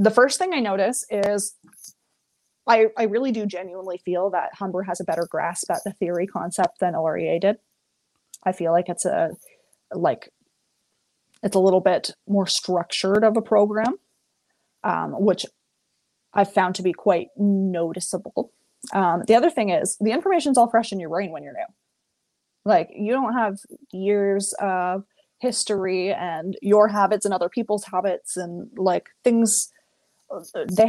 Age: 20-39